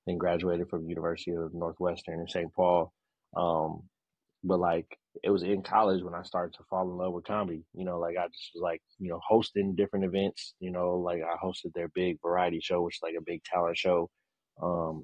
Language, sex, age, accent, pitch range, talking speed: English, male, 20-39, American, 85-105 Hz, 215 wpm